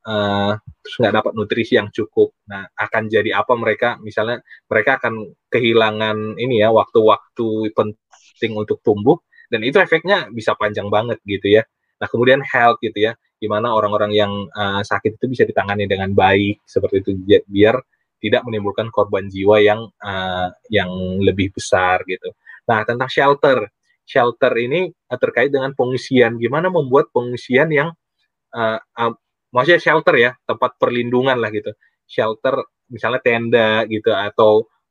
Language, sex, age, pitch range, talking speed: Indonesian, male, 20-39, 105-125 Hz, 145 wpm